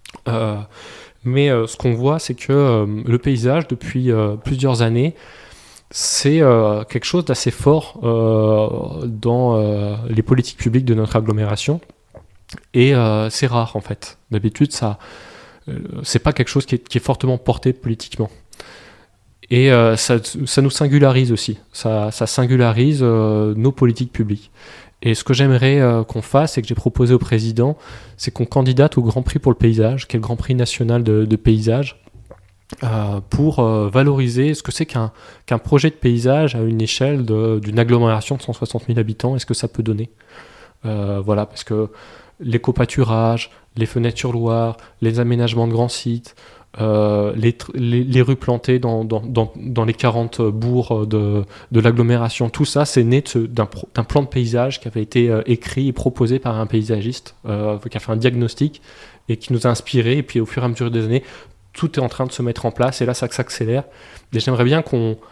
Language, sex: French, male